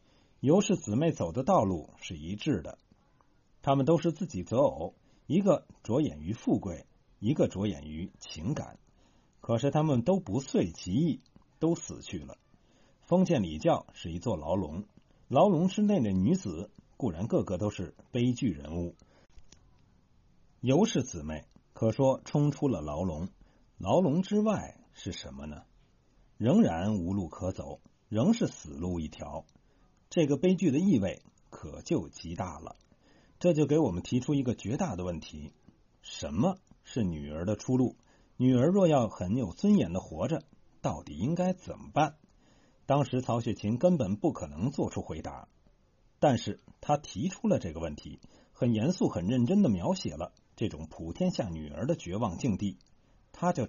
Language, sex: Chinese, male